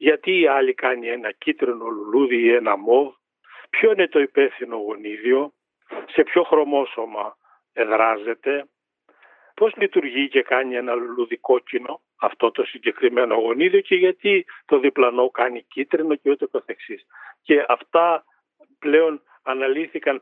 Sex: male